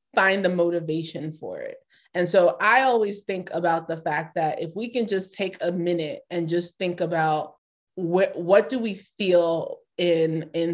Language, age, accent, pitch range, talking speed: English, 20-39, American, 170-205 Hz, 175 wpm